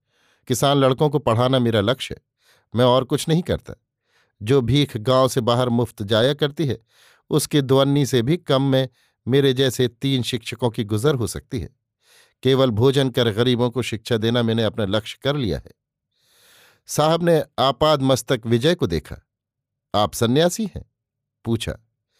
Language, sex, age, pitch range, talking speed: Hindi, male, 50-69, 115-140 Hz, 160 wpm